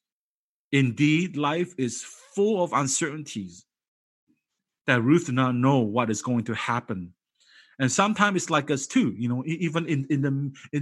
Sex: male